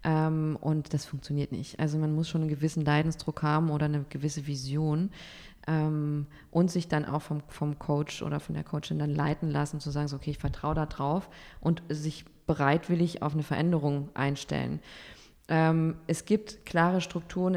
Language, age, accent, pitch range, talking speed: German, 20-39, German, 150-180 Hz, 180 wpm